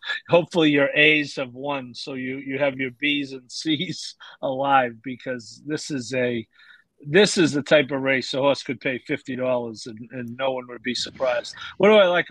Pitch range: 130-150 Hz